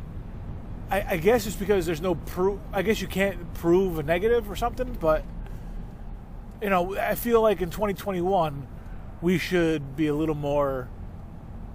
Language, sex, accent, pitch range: English, male, American, 110-185 Hz